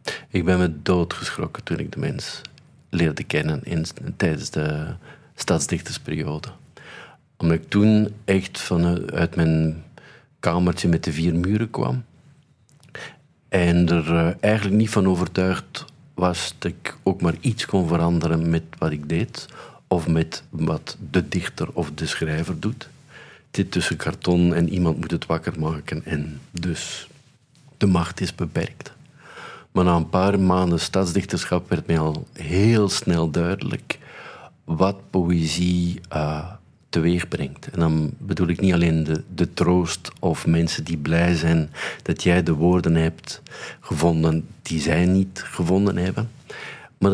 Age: 50-69